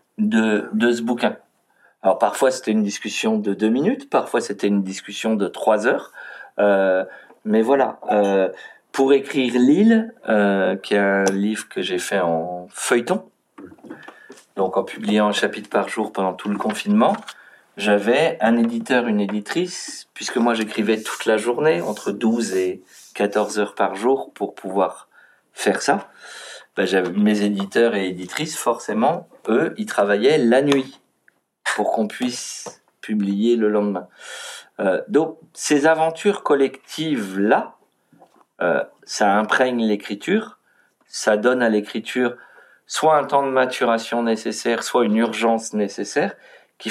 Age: 40-59